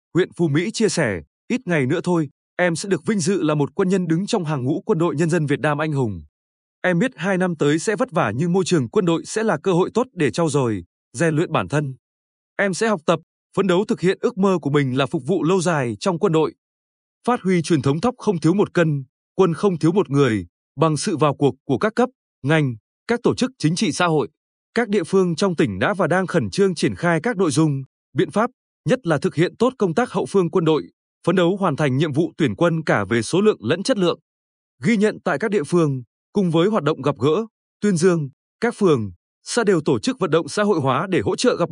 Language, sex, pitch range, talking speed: Vietnamese, male, 145-195 Hz, 255 wpm